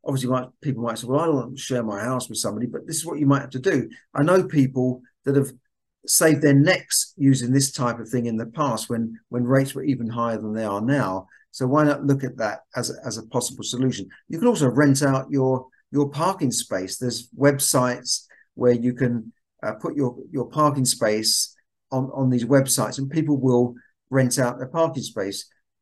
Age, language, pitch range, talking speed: 50-69, English, 120-140 Hz, 215 wpm